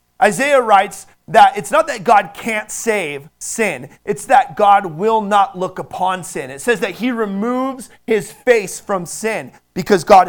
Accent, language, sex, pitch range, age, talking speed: American, English, male, 175-225 Hz, 30-49, 170 wpm